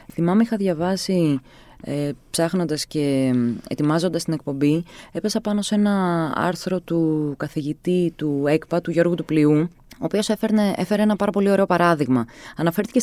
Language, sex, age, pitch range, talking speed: Greek, female, 20-39, 155-210 Hz, 145 wpm